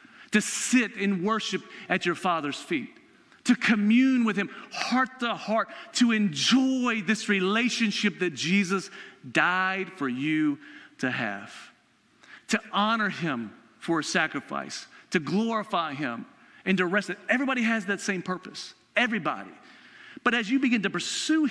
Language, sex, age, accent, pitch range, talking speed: English, male, 40-59, American, 200-245 Hz, 140 wpm